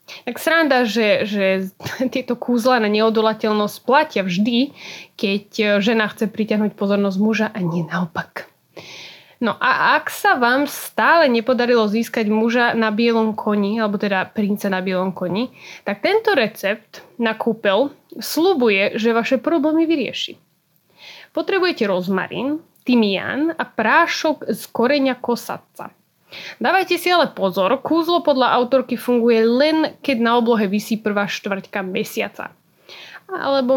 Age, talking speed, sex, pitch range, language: 20-39, 130 wpm, female, 200-260 Hz, Slovak